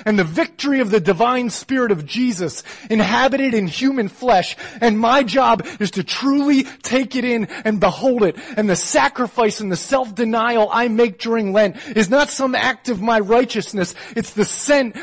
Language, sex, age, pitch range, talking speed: English, male, 30-49, 175-250 Hz, 180 wpm